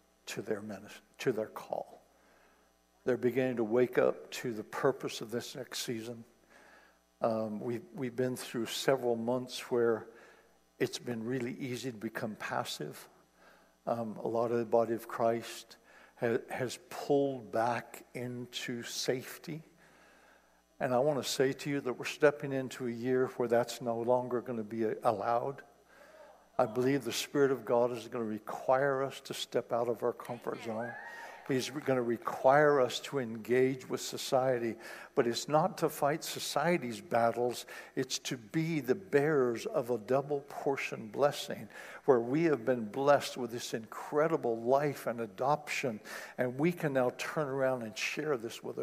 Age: 60-79